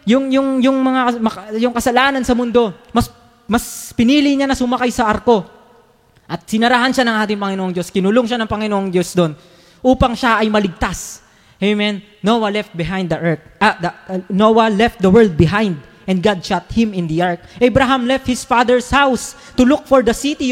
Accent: native